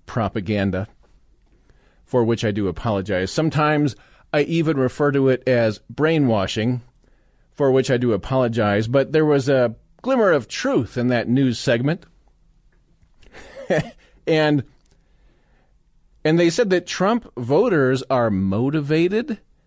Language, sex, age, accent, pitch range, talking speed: English, male, 40-59, American, 120-155 Hz, 120 wpm